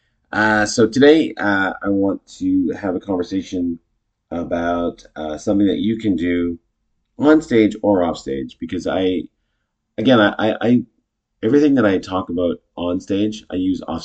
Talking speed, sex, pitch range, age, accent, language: 160 wpm, male, 85-105 Hz, 30-49, American, English